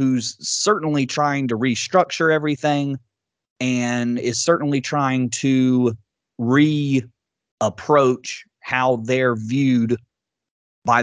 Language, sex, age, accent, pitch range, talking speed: English, male, 30-49, American, 115-140 Hz, 85 wpm